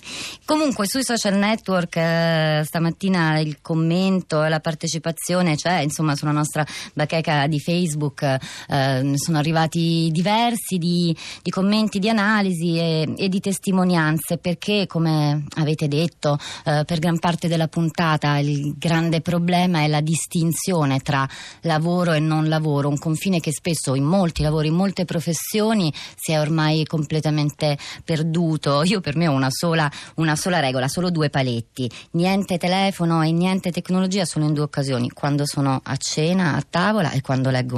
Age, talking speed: 20-39, 155 wpm